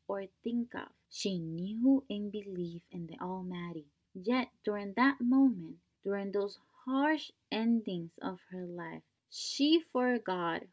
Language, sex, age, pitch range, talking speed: English, female, 20-39, 170-205 Hz, 130 wpm